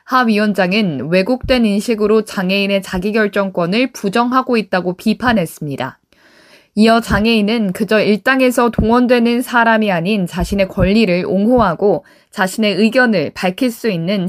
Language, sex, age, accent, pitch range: Korean, female, 20-39, native, 200-250 Hz